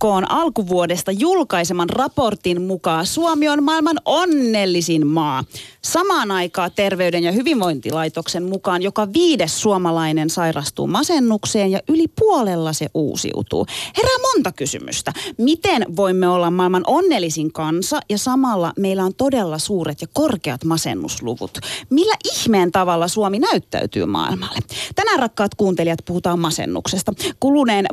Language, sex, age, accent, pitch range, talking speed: Finnish, female, 30-49, native, 175-265 Hz, 120 wpm